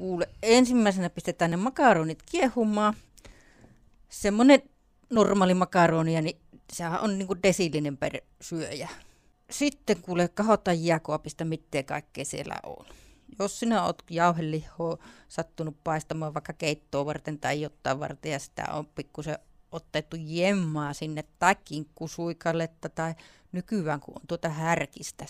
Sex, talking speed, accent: female, 120 wpm, native